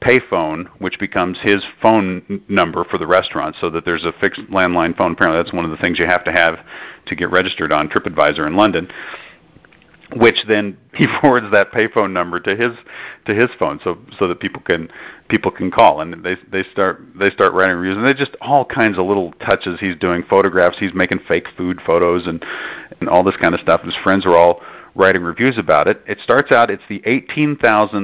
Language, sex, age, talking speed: English, male, 40-59, 210 wpm